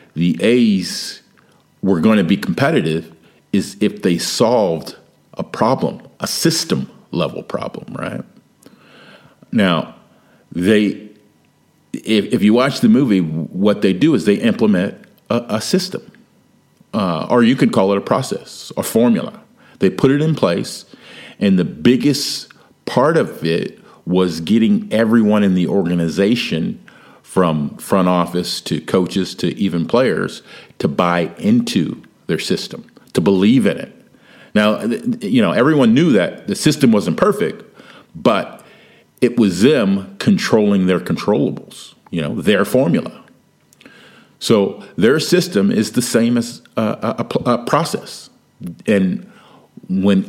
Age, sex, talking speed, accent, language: 50-69, male, 135 wpm, American, English